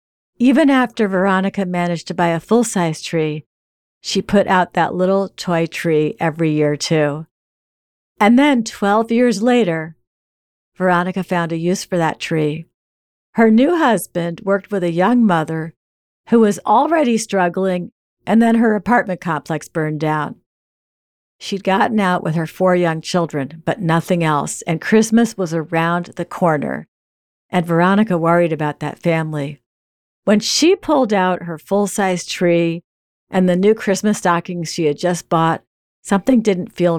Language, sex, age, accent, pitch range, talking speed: English, female, 50-69, American, 160-200 Hz, 150 wpm